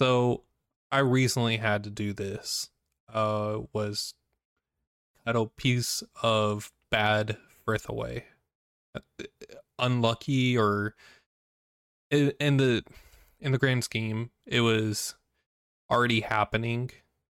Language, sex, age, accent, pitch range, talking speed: English, male, 20-39, American, 105-120 Hz, 105 wpm